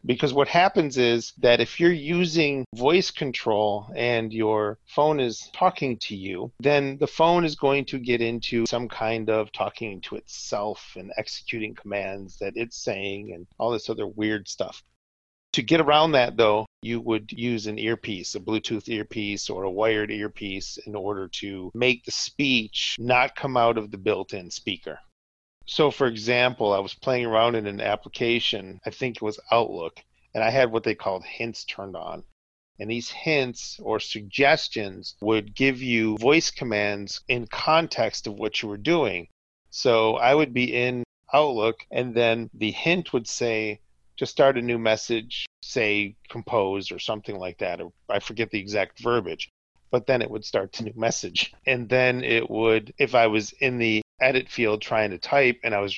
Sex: male